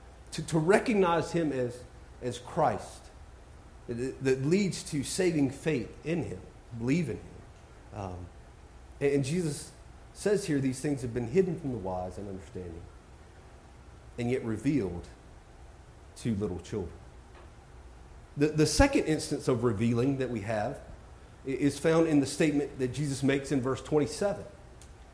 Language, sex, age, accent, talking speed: English, male, 40-59, American, 145 wpm